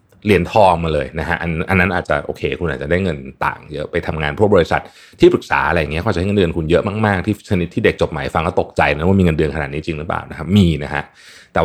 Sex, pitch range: male, 80-110 Hz